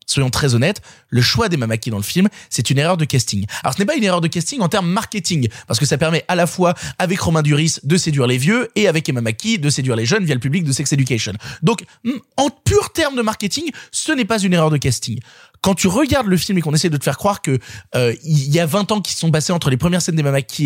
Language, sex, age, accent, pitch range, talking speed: French, male, 20-39, French, 135-190 Hz, 275 wpm